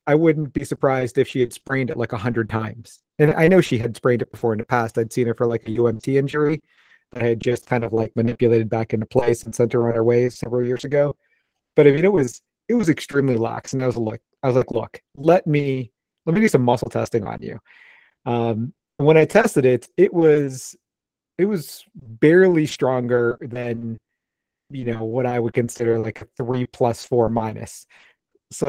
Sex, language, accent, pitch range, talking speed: male, English, American, 120-145 Hz, 220 wpm